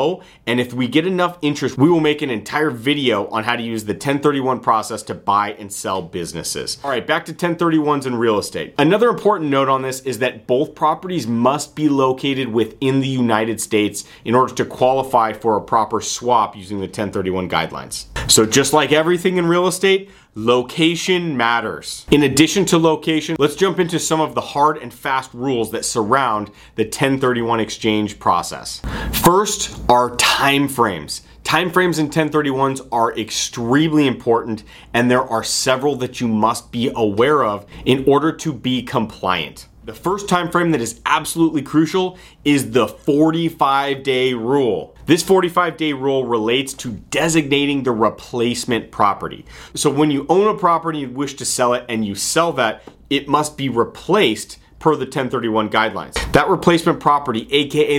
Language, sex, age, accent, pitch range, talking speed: English, male, 30-49, American, 120-155 Hz, 170 wpm